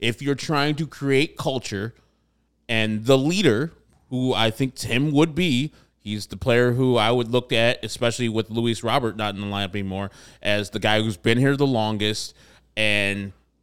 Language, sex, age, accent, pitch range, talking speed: English, male, 30-49, American, 105-135 Hz, 180 wpm